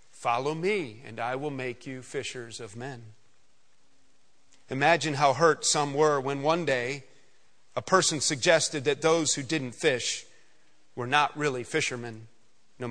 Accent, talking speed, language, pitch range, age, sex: American, 145 wpm, English, 130-160 Hz, 40-59, male